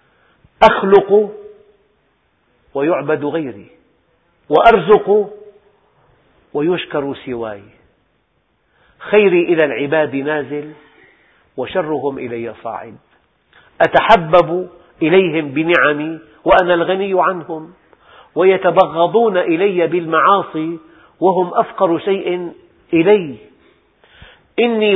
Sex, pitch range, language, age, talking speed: male, 150-190 Hz, Arabic, 50-69, 65 wpm